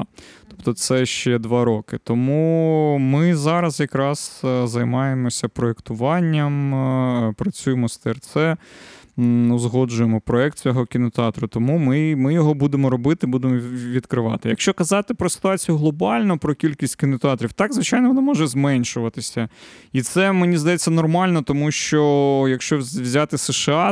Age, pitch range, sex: 20-39, 130-155 Hz, male